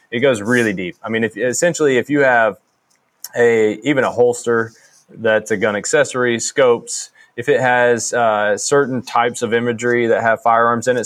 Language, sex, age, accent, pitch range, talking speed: English, male, 20-39, American, 110-130 Hz, 180 wpm